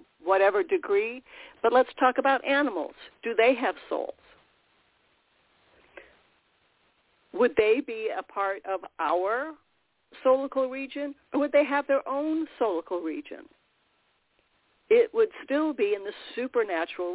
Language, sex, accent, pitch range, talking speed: English, female, American, 190-315 Hz, 125 wpm